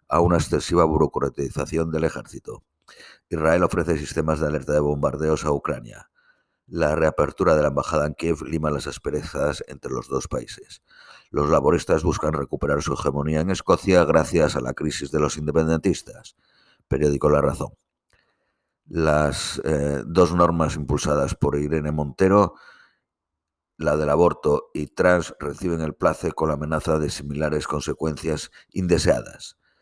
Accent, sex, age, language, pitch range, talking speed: Spanish, male, 50-69, Spanish, 75-80 Hz, 140 wpm